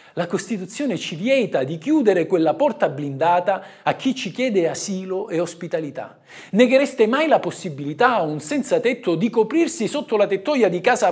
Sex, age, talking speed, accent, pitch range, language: male, 50-69, 165 wpm, native, 180-295 Hz, Italian